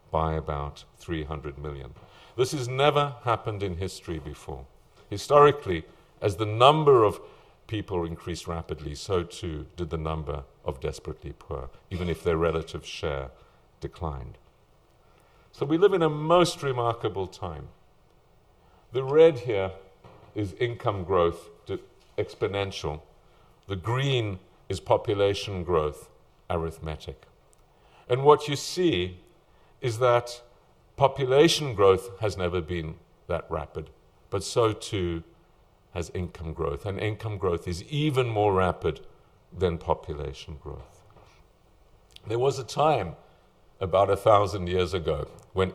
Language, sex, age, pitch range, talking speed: English, male, 50-69, 80-110 Hz, 120 wpm